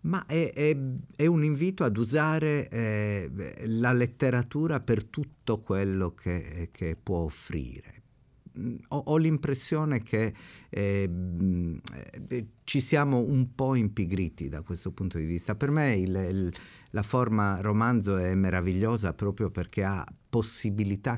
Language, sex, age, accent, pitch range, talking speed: Italian, male, 50-69, native, 90-120 Hz, 135 wpm